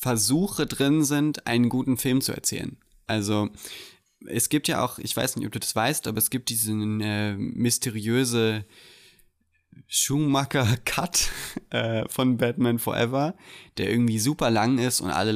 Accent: German